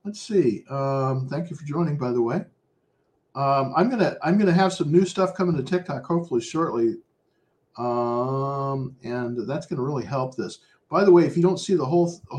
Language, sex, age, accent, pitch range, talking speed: English, male, 50-69, American, 125-170 Hz, 195 wpm